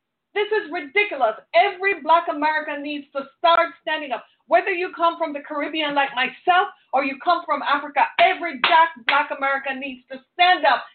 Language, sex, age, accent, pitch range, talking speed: English, female, 40-59, American, 270-380 Hz, 170 wpm